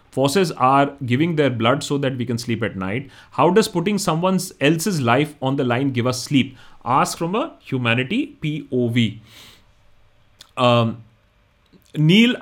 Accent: native